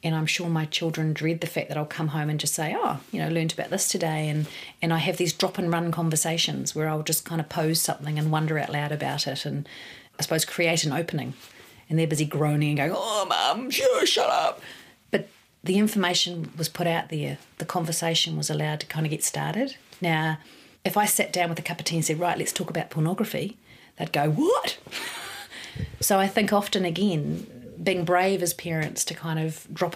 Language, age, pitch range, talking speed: English, 40-59, 155-180 Hz, 215 wpm